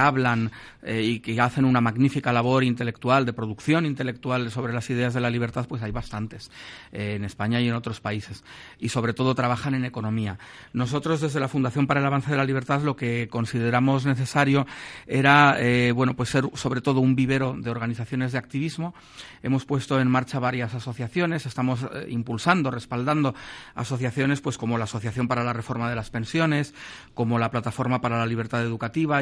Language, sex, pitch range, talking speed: Spanish, male, 120-135 Hz, 185 wpm